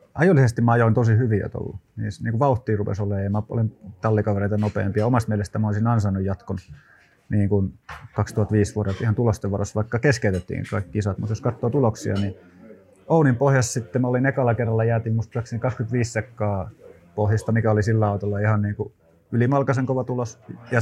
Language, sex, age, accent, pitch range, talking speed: Finnish, male, 30-49, native, 105-120 Hz, 180 wpm